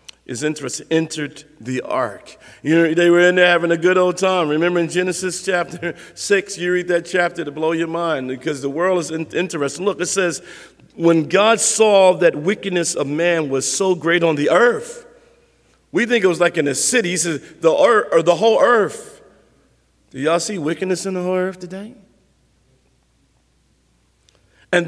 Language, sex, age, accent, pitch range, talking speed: English, male, 50-69, American, 165-220 Hz, 185 wpm